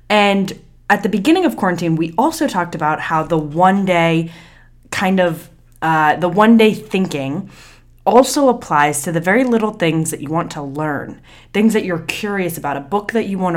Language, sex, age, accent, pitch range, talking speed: English, female, 10-29, American, 165-220 Hz, 185 wpm